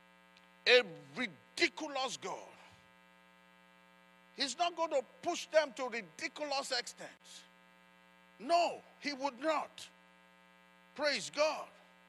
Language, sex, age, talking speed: English, male, 50-69, 90 wpm